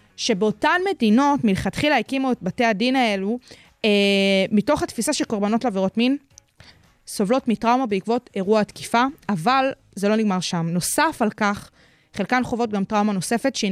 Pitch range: 200-245 Hz